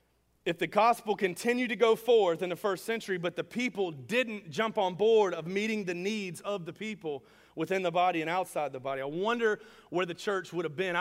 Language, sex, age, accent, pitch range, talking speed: English, male, 40-59, American, 130-180 Hz, 220 wpm